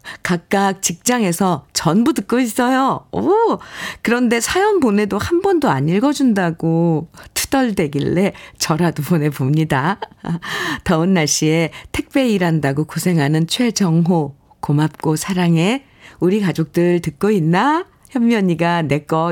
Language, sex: Korean, female